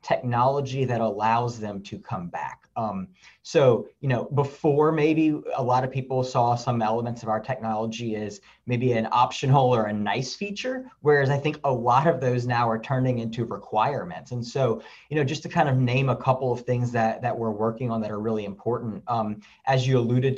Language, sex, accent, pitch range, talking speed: English, male, American, 110-130 Hz, 205 wpm